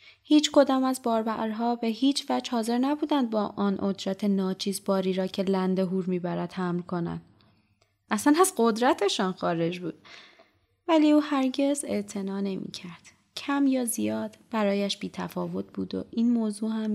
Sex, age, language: female, 20-39, Persian